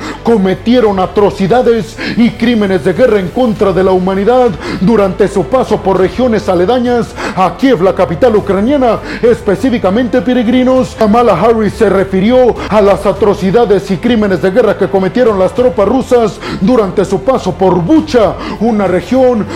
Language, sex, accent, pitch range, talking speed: Spanish, male, Mexican, 195-245 Hz, 145 wpm